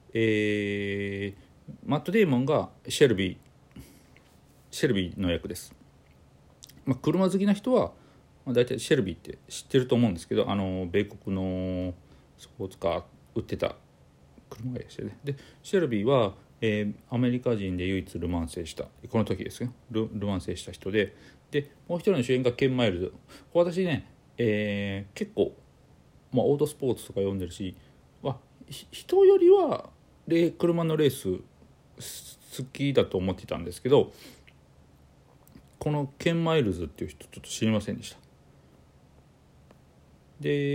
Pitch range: 95-145 Hz